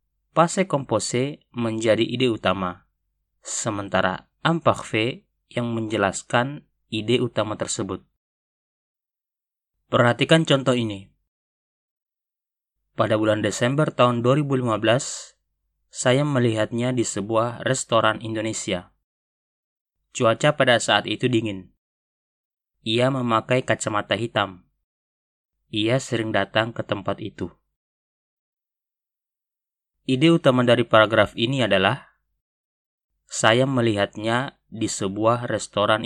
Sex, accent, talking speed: male, native, 90 wpm